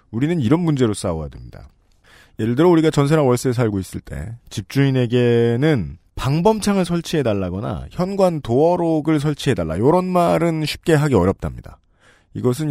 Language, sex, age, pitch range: Korean, male, 40-59, 100-150 Hz